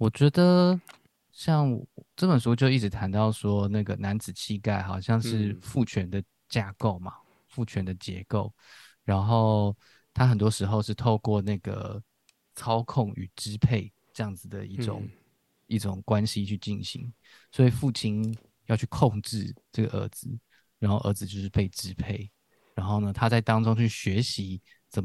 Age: 20-39